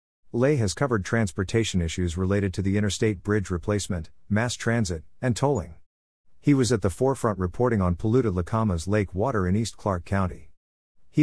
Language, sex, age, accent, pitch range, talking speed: English, male, 50-69, American, 90-115 Hz, 165 wpm